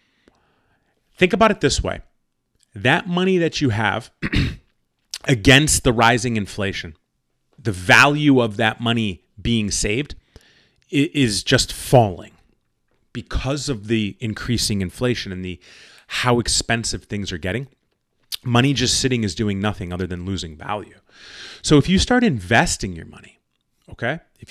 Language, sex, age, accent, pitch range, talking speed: English, male, 30-49, American, 105-135 Hz, 135 wpm